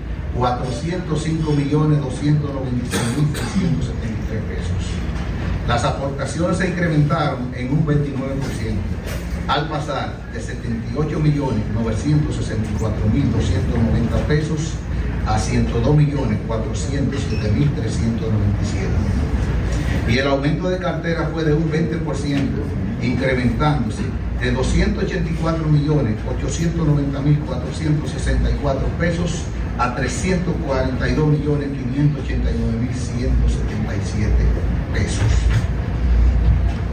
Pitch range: 105-150 Hz